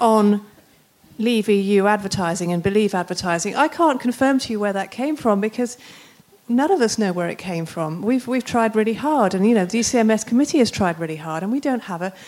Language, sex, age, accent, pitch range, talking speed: English, female, 40-59, British, 180-245 Hz, 220 wpm